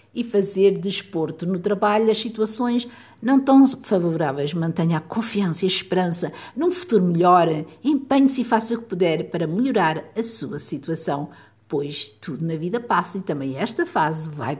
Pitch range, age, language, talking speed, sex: 160-220 Hz, 50-69, Portuguese, 170 wpm, female